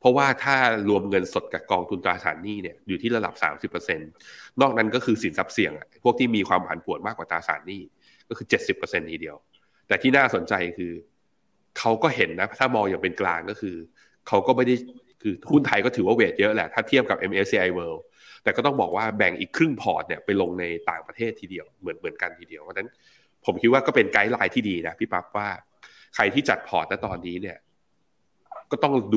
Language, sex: Thai, male